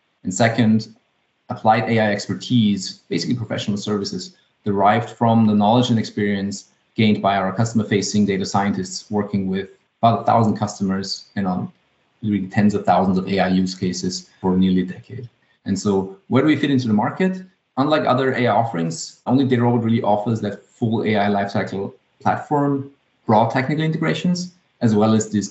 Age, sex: 30-49, male